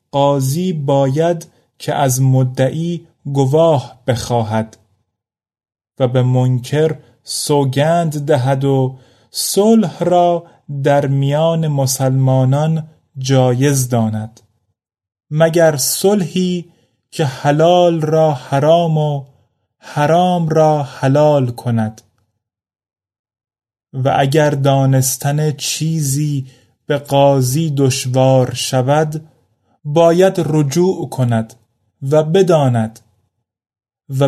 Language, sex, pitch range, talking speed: Persian, male, 115-155 Hz, 80 wpm